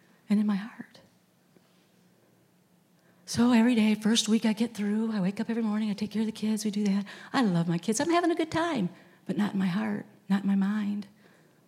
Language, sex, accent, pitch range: English, female, American, 205-280 Hz